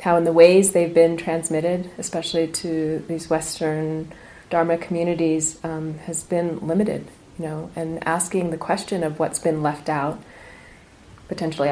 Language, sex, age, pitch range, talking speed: English, female, 30-49, 155-170 Hz, 150 wpm